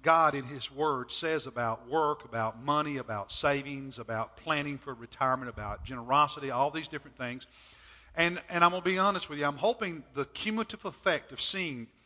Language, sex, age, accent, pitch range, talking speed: English, male, 50-69, American, 135-180 Hz, 185 wpm